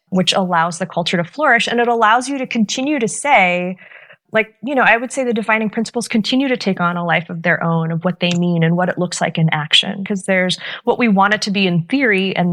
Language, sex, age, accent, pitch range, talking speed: English, female, 20-39, American, 165-195 Hz, 260 wpm